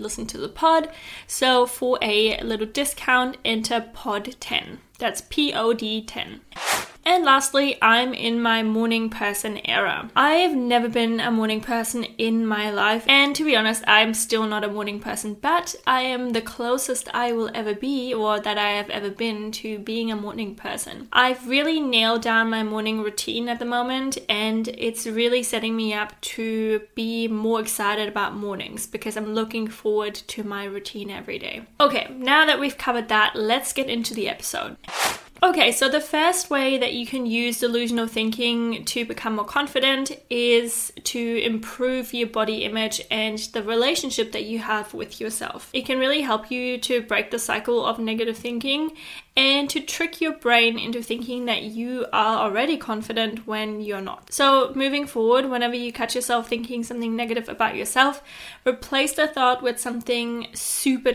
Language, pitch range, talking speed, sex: English, 220-255 Hz, 175 wpm, female